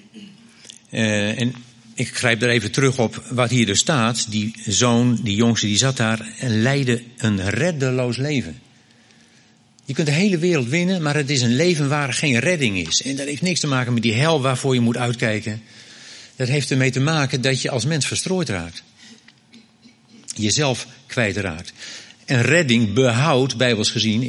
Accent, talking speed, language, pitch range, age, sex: Dutch, 175 wpm, Dutch, 110-140 Hz, 60-79, male